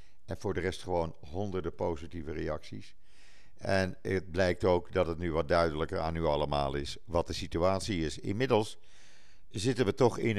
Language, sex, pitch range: Dutch, male, 85-110 Hz